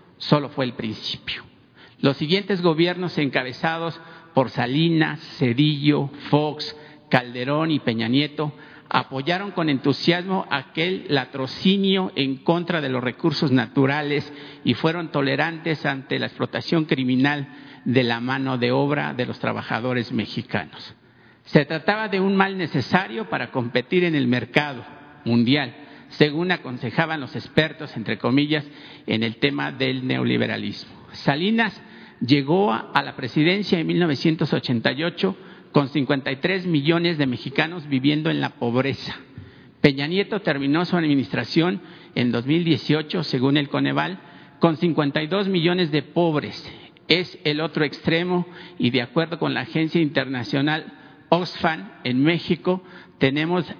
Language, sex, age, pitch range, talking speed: Spanish, male, 50-69, 135-170 Hz, 125 wpm